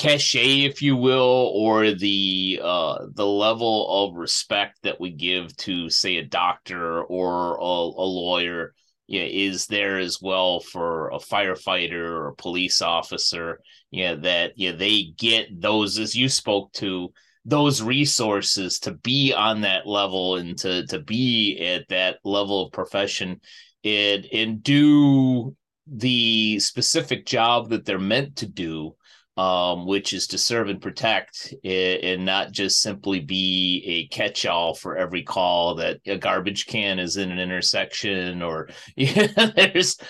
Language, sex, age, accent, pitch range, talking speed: English, male, 30-49, American, 90-120 Hz, 160 wpm